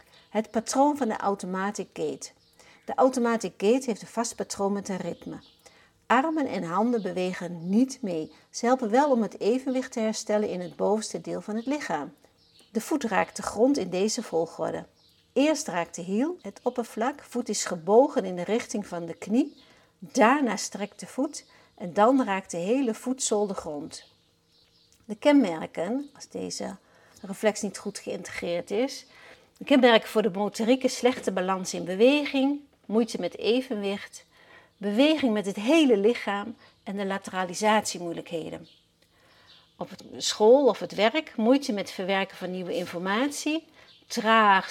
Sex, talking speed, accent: female, 155 wpm, Dutch